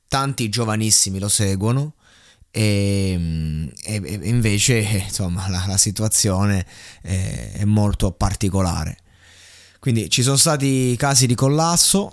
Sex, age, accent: male, 20-39, native